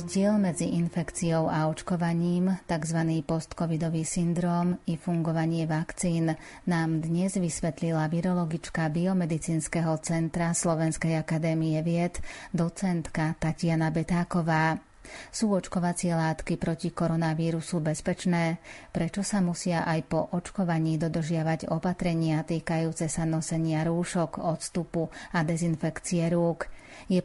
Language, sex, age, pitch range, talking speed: Slovak, female, 30-49, 160-175 Hz, 100 wpm